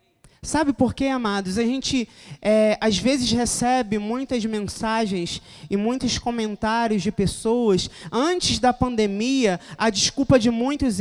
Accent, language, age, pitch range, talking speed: Brazilian, Portuguese, 20-39, 220-280 Hz, 125 wpm